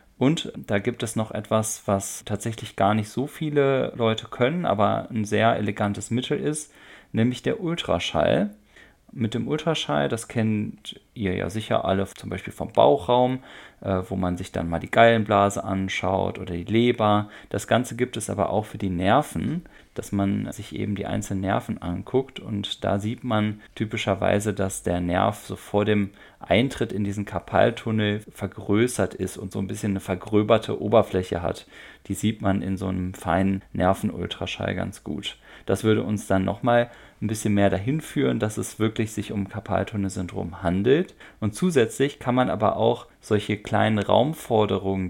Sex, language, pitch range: male, German, 95-115 Hz